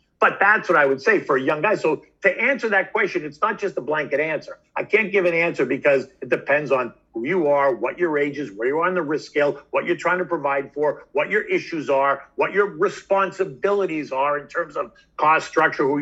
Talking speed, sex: 245 wpm, male